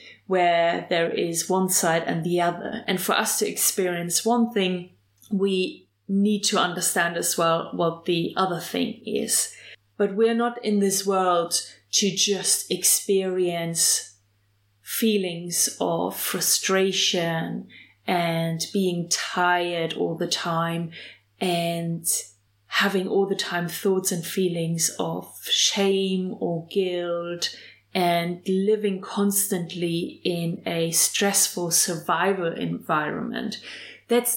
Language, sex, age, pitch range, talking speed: English, female, 30-49, 170-200 Hz, 115 wpm